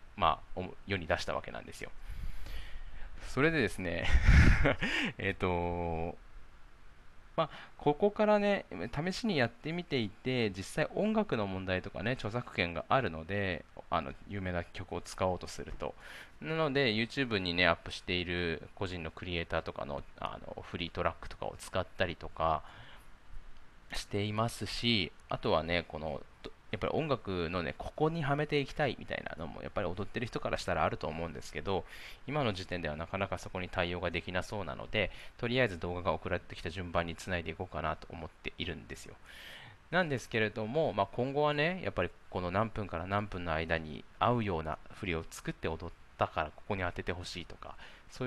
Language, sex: Japanese, male